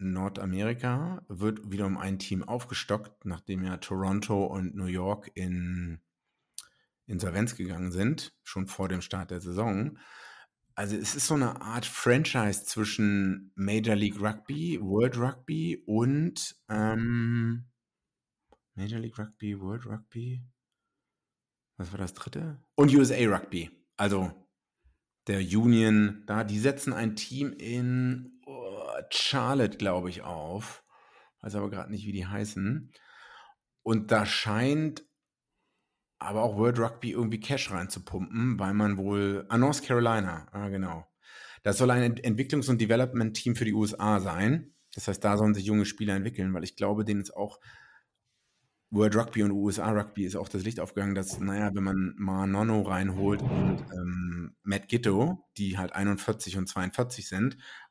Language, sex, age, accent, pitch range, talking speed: German, male, 50-69, German, 95-120 Hz, 145 wpm